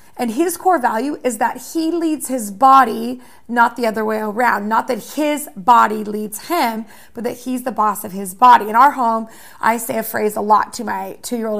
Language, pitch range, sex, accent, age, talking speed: English, 235-285 Hz, female, American, 30-49, 210 wpm